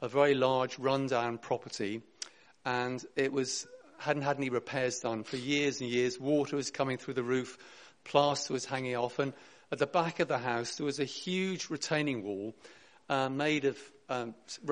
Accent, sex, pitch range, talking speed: British, male, 130-160 Hz, 180 wpm